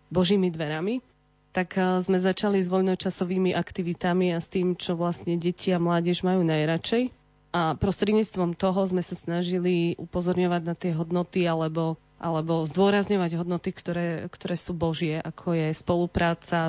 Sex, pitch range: female, 175-190 Hz